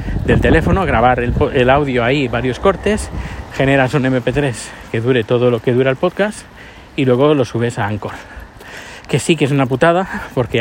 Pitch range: 115-145 Hz